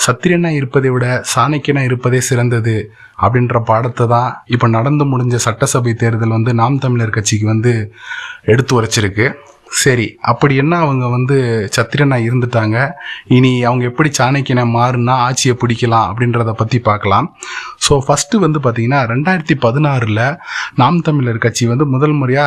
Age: 20-39